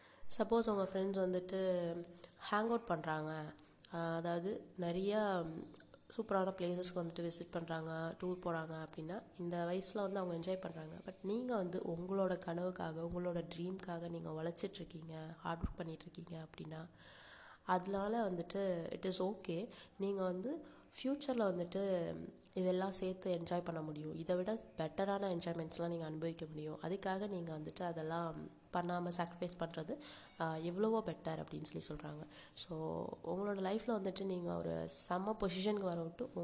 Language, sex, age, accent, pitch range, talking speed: Tamil, female, 20-39, native, 165-190 Hz, 130 wpm